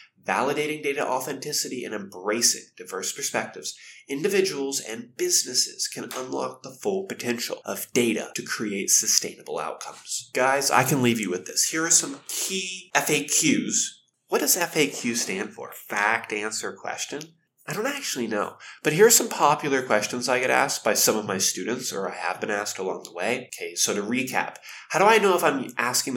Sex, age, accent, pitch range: male, 20-39, American, 110-165 Hz